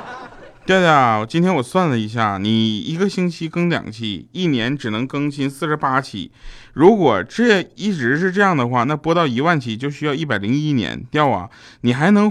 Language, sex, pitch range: Chinese, male, 110-170 Hz